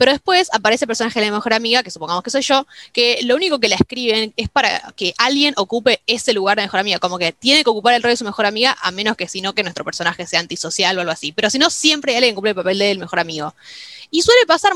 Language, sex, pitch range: Spanish, female, 195-255 Hz